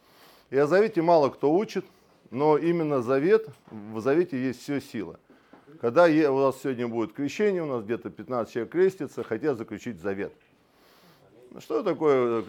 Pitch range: 120-175 Hz